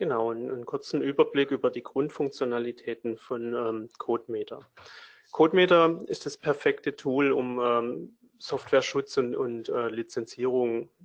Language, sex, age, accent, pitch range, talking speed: German, male, 30-49, German, 125-165 Hz, 125 wpm